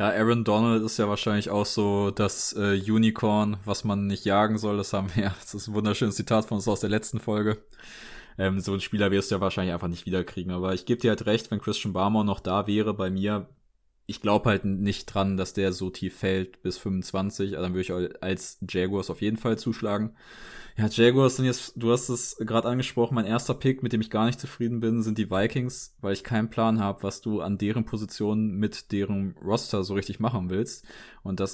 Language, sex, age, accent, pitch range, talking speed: German, male, 20-39, German, 95-110 Hz, 220 wpm